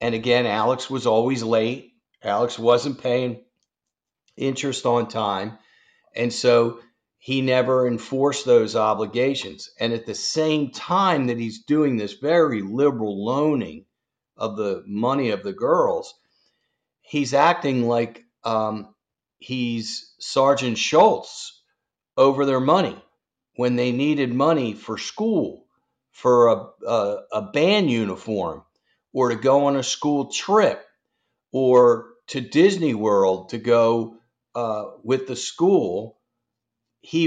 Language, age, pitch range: English, 50-69, 115-145 Hz